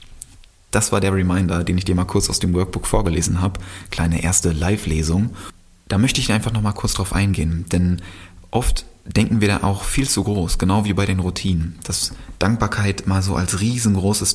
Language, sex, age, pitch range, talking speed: German, male, 20-39, 90-105 Hz, 190 wpm